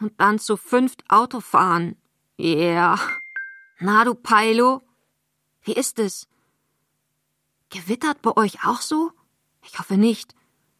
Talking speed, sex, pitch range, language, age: 115 wpm, female, 200-250 Hz, German, 20-39